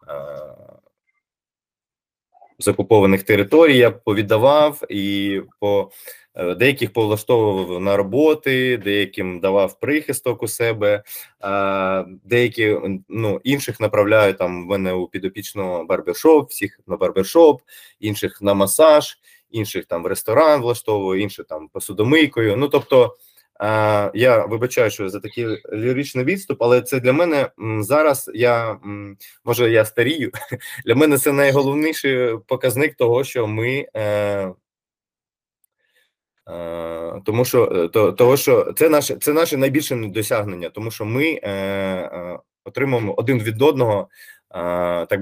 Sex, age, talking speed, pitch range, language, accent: male, 20-39, 110 wpm, 100-145 Hz, Ukrainian, native